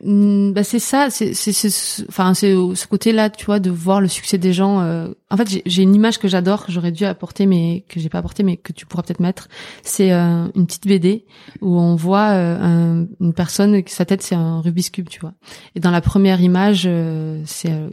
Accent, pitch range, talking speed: French, 175-210 Hz, 230 wpm